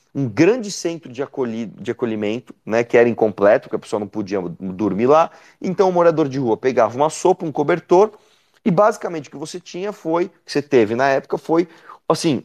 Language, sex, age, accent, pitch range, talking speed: Portuguese, male, 30-49, Brazilian, 120-165 Hz, 205 wpm